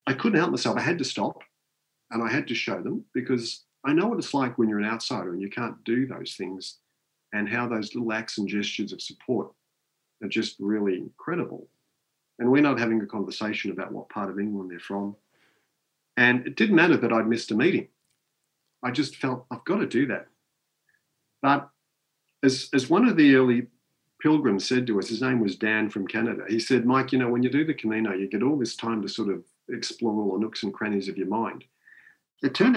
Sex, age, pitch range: male, 50-69, 105-130 Hz